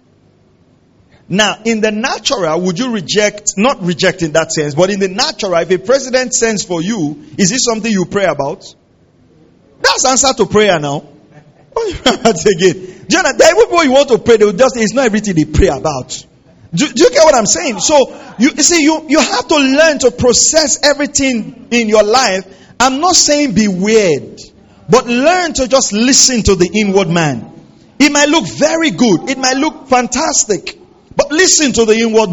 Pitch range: 200-295 Hz